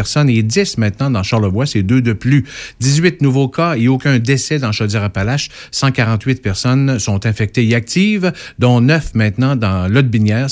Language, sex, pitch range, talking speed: French, male, 110-145 Hz, 160 wpm